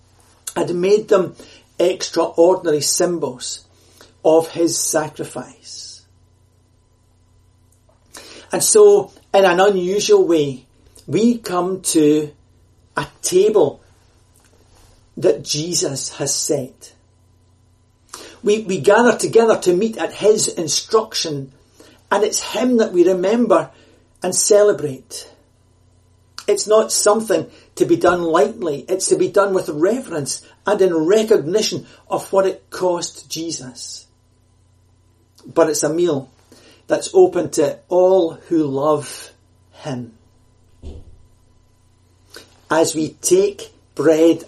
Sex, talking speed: male, 105 wpm